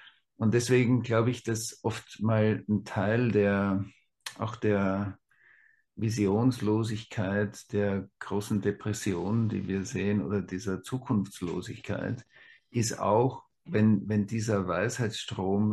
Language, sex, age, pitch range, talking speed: German, male, 50-69, 100-115 Hz, 105 wpm